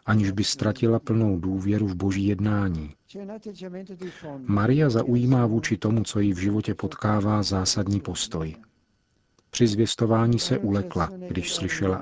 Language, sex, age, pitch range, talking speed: Czech, male, 40-59, 95-110 Hz, 125 wpm